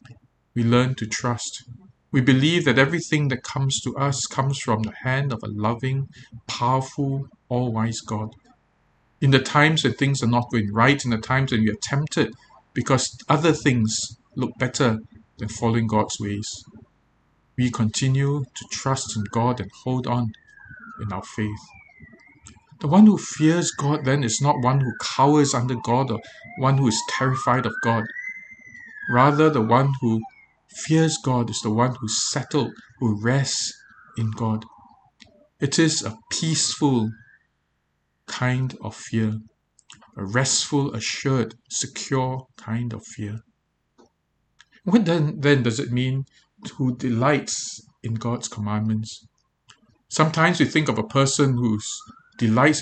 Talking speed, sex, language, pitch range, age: 145 wpm, male, English, 110-140 Hz, 50-69